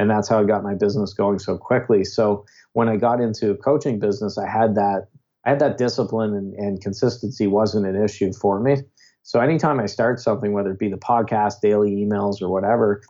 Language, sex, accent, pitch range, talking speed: English, male, American, 100-115 Hz, 210 wpm